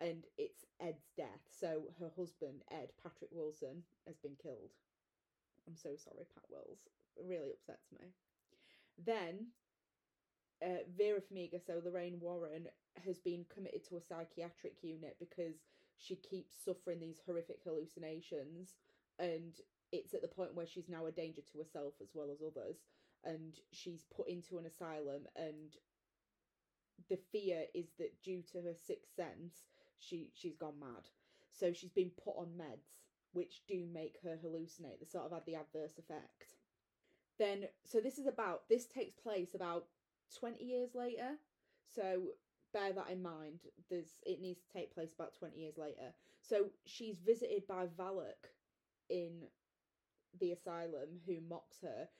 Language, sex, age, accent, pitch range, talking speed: English, female, 30-49, British, 165-195 Hz, 155 wpm